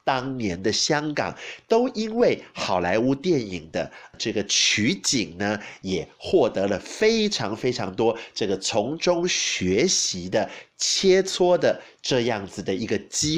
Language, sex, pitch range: Chinese, male, 115-175 Hz